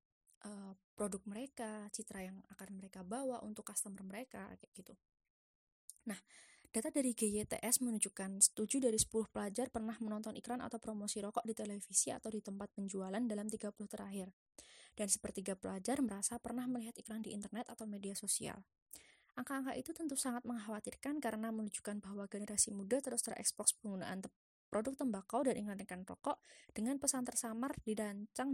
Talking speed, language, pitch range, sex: 150 wpm, Indonesian, 200-240 Hz, female